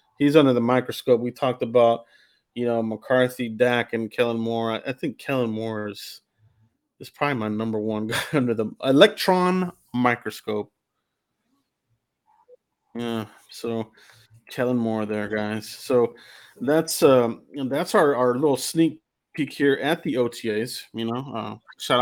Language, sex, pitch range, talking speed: English, male, 115-130 Hz, 140 wpm